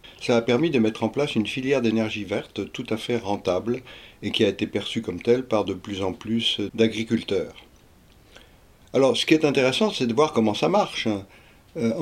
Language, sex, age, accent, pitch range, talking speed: French, male, 60-79, French, 105-125 Hz, 200 wpm